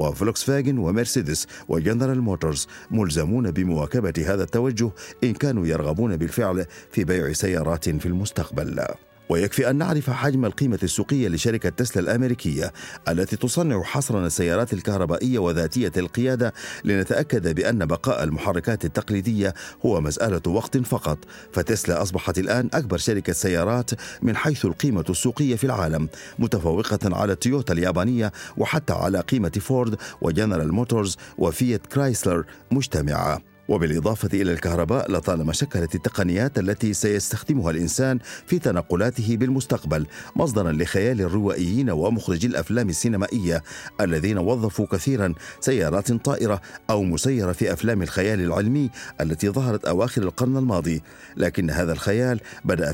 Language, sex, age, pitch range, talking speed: Arabic, male, 50-69, 90-125 Hz, 120 wpm